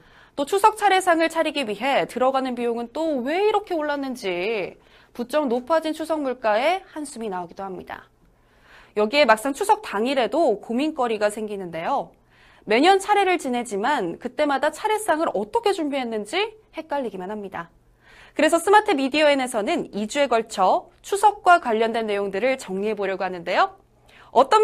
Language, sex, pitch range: Korean, female, 215-340 Hz